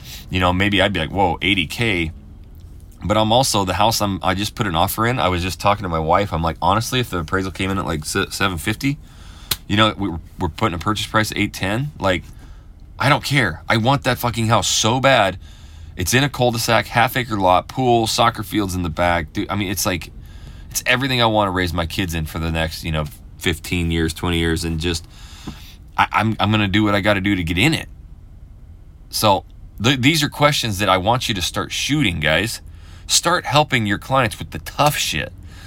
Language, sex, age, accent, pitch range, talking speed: English, male, 20-39, American, 85-115 Hz, 220 wpm